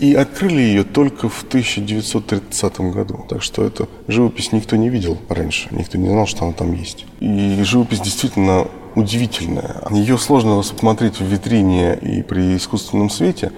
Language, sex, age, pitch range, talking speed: Russian, male, 20-39, 90-115 Hz, 155 wpm